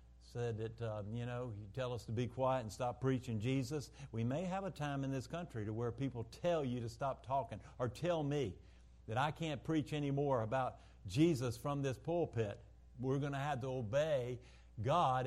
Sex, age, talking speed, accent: male, 50-69, 200 wpm, American